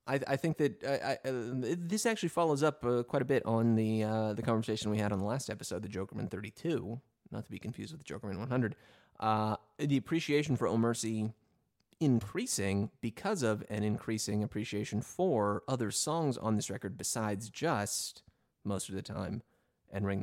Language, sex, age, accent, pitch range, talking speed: English, male, 30-49, American, 105-125 Hz, 190 wpm